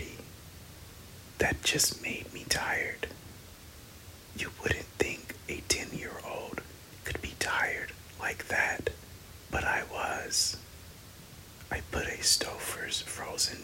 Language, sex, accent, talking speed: English, male, American, 110 wpm